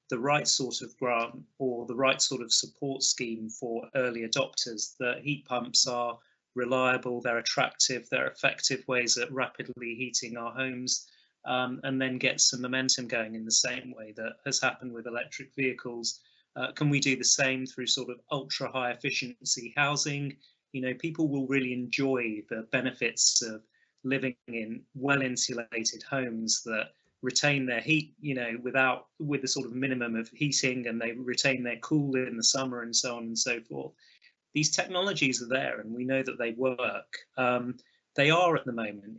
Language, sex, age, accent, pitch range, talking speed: English, male, 30-49, British, 115-135 Hz, 180 wpm